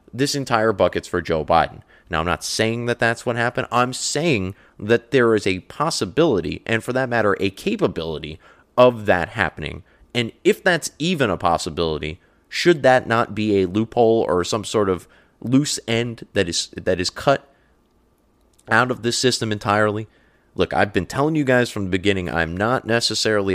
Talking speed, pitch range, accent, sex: 180 wpm, 95-130 Hz, American, male